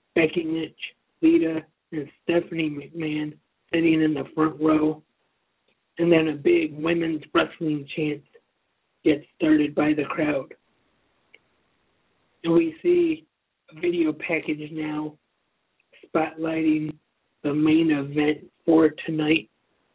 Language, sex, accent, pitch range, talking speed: English, male, American, 155-170 Hz, 110 wpm